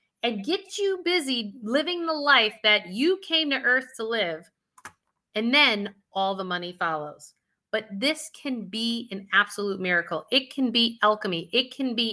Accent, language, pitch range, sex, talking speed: American, English, 200-280 Hz, female, 170 wpm